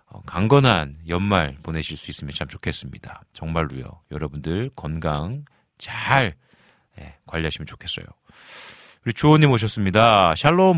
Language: Korean